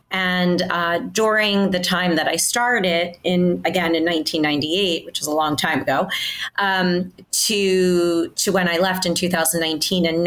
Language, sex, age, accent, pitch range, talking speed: English, female, 30-49, American, 165-185 Hz, 150 wpm